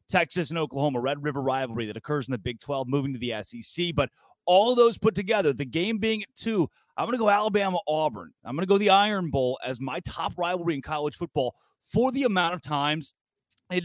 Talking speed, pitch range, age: 215 wpm, 140-205 Hz, 30-49